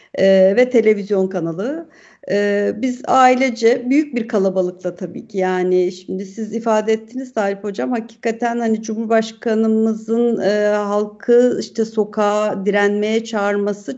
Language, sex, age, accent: Turkish, female, 50-69, native